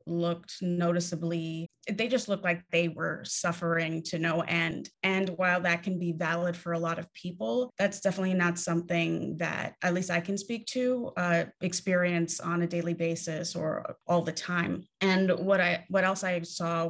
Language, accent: English, American